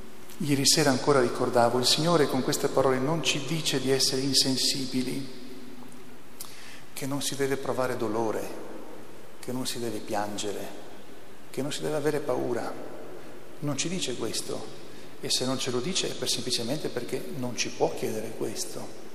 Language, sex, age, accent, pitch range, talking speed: Italian, male, 40-59, native, 125-150 Hz, 155 wpm